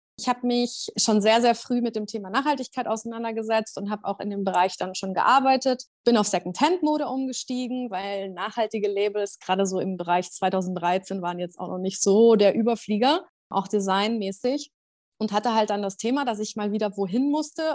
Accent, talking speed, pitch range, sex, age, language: German, 190 wpm, 200-245 Hz, female, 20-39, German